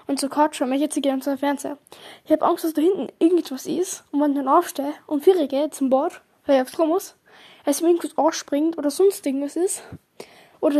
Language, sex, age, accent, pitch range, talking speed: German, female, 10-29, German, 280-335 Hz, 230 wpm